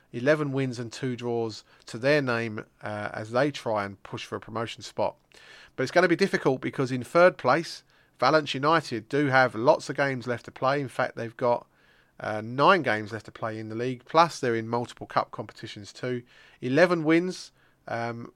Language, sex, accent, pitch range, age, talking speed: English, male, British, 115-155 Hz, 30-49, 200 wpm